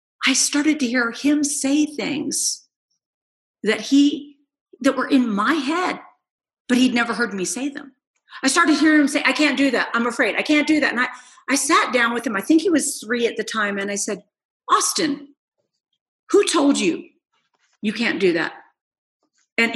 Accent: American